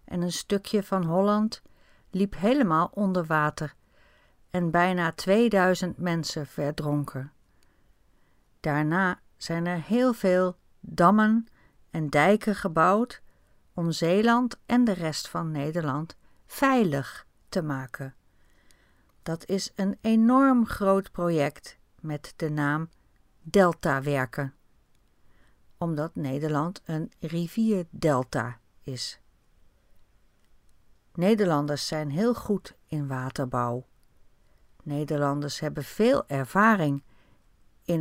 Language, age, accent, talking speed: Dutch, 50-69, Dutch, 95 wpm